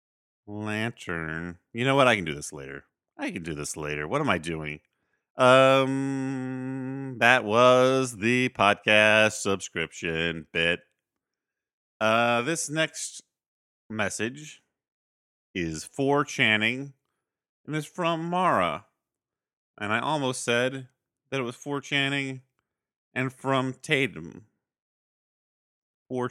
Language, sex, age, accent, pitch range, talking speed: English, male, 40-59, American, 95-135 Hz, 110 wpm